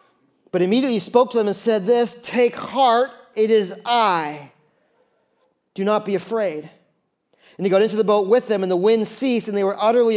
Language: English